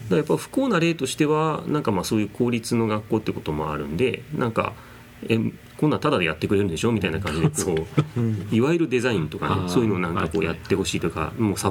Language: Japanese